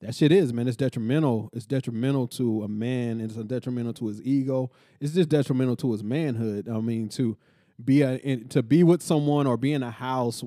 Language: English